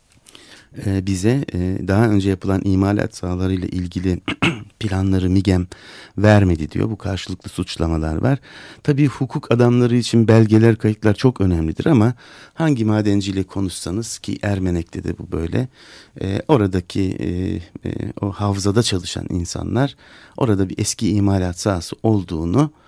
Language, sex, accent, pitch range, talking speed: Turkish, male, native, 95-110 Hz, 115 wpm